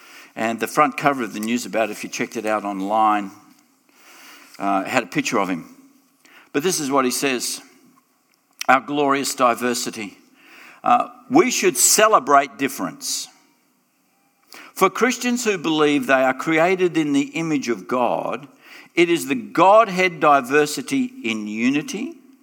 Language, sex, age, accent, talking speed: English, male, 60-79, Australian, 145 wpm